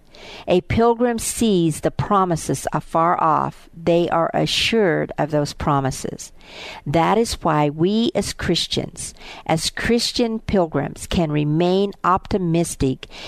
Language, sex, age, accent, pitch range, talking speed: English, female, 50-69, American, 155-190 Hz, 115 wpm